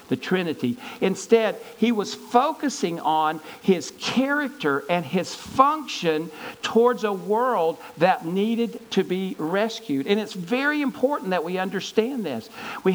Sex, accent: male, American